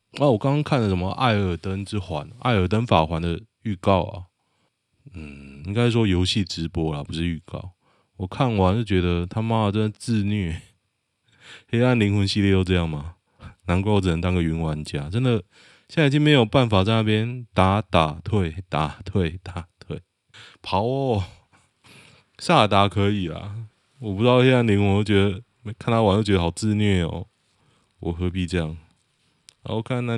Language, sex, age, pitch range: Chinese, male, 20-39, 85-115 Hz